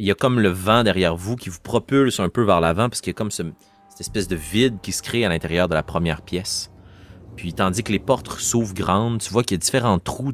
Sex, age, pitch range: male, 30-49, 85-115 Hz